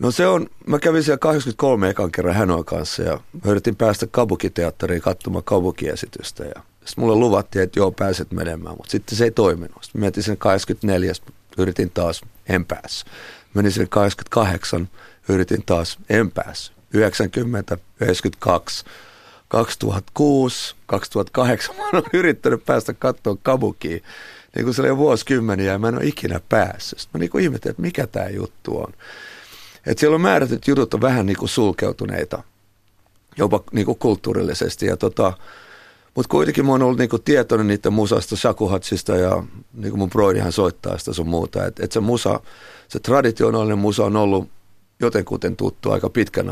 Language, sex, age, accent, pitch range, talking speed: Finnish, male, 40-59, native, 95-115 Hz, 150 wpm